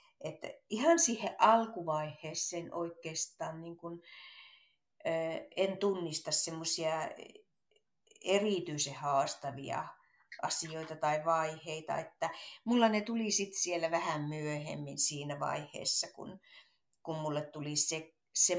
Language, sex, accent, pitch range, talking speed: Finnish, female, native, 155-215 Hz, 105 wpm